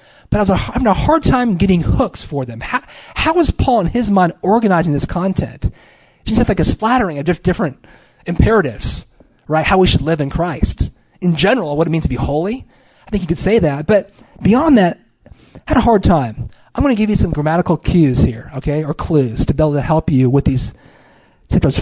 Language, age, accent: English, 40-59, American